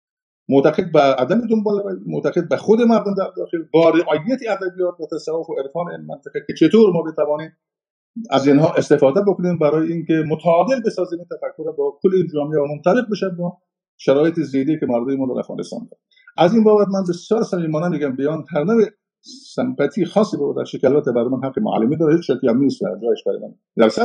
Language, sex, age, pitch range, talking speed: Persian, male, 50-69, 150-220 Hz, 140 wpm